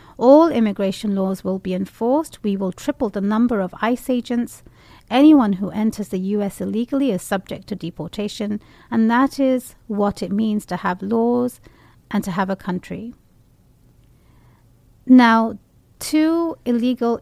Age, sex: 40-59, female